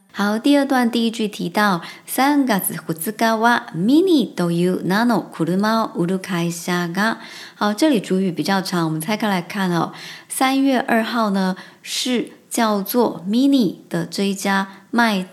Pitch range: 180-235 Hz